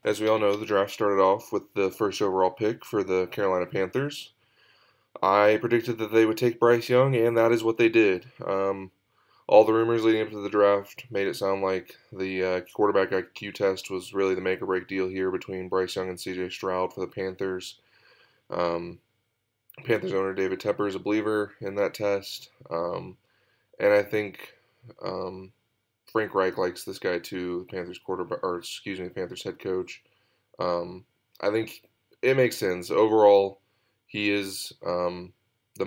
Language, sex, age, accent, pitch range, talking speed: English, male, 20-39, American, 95-110 Hz, 175 wpm